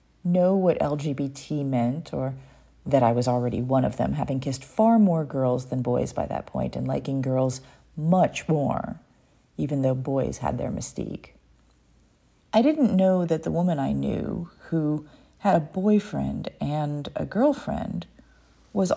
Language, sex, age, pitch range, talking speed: English, female, 40-59, 135-205 Hz, 155 wpm